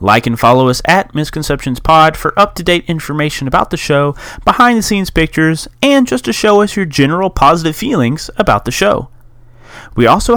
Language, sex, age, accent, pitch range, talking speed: English, male, 30-49, American, 110-155 Hz, 170 wpm